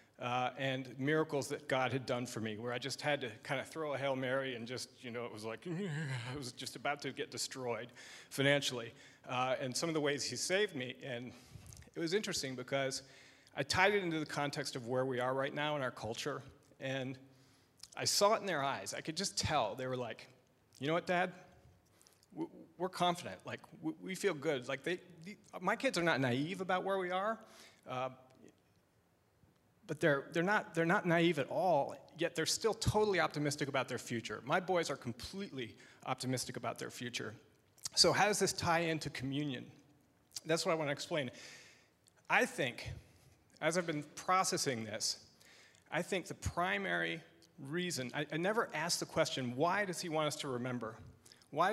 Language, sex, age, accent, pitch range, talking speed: English, male, 40-59, American, 125-170 Hz, 185 wpm